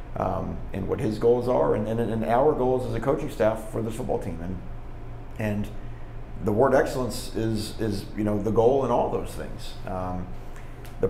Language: English